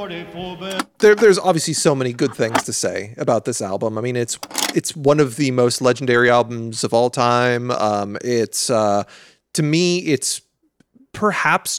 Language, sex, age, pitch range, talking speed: English, male, 30-49, 120-170 Hz, 165 wpm